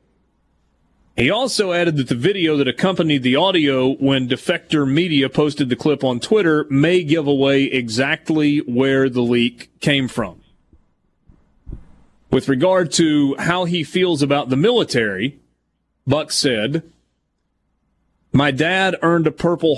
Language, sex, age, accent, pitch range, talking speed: English, male, 30-49, American, 125-160 Hz, 130 wpm